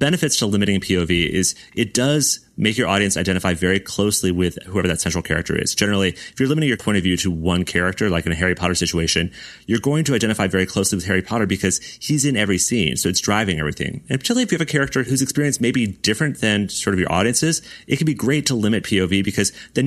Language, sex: English, male